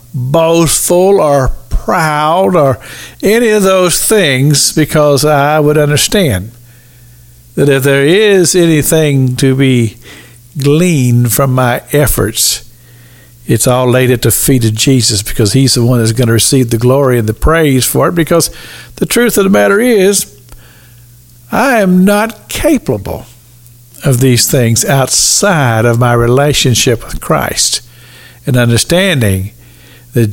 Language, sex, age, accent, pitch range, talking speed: English, male, 60-79, American, 120-170 Hz, 135 wpm